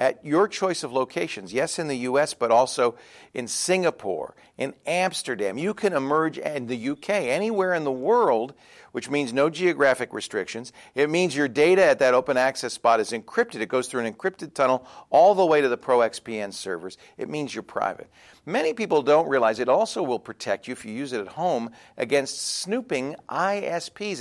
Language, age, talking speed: English, 50-69, 190 wpm